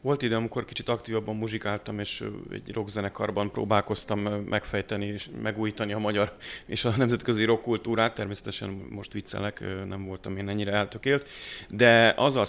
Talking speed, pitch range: 140 wpm, 100-115 Hz